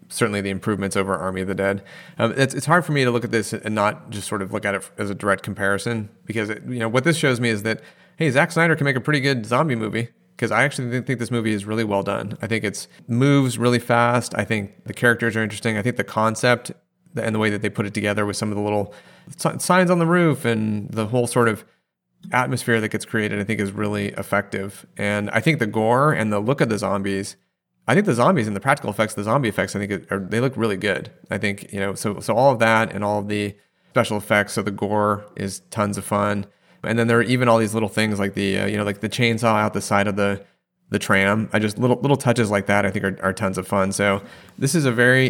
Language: English